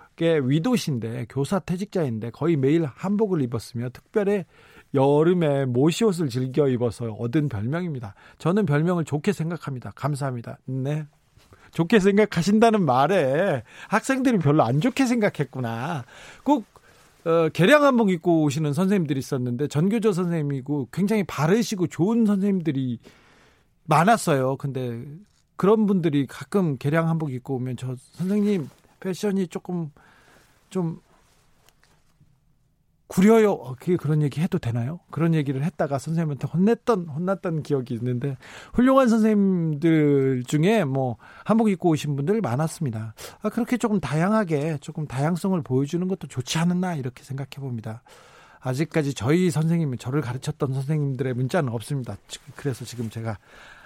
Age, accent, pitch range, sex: 40-59, native, 135-190 Hz, male